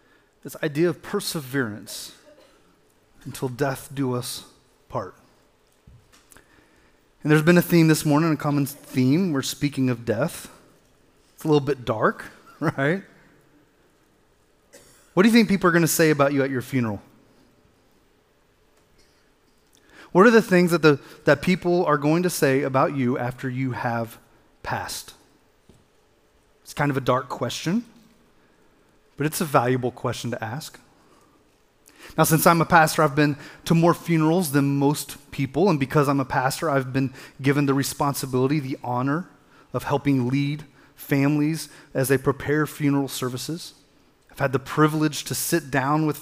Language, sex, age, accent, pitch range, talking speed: English, male, 30-49, American, 135-155 Hz, 150 wpm